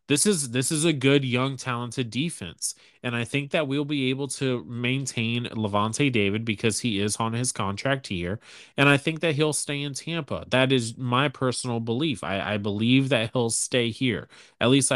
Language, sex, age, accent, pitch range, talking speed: English, male, 20-39, American, 110-145 Hz, 195 wpm